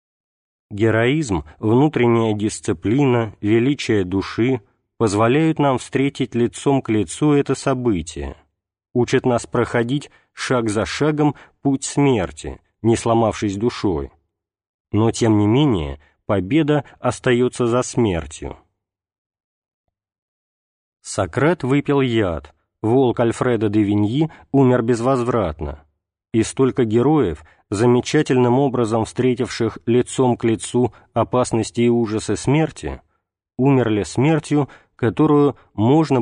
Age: 40-59